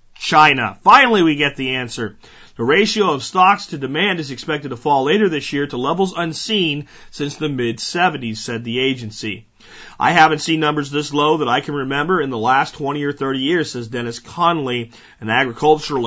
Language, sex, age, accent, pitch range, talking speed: English, male, 40-59, American, 125-160 Hz, 185 wpm